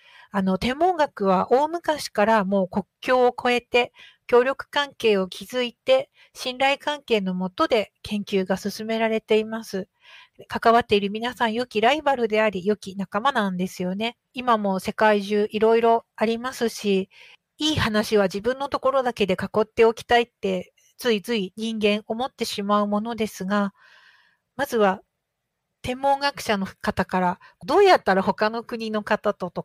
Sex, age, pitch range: female, 50-69, 200-250 Hz